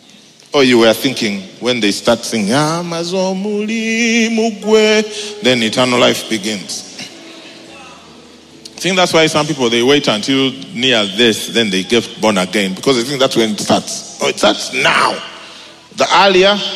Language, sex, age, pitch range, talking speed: English, male, 40-59, 155-220 Hz, 150 wpm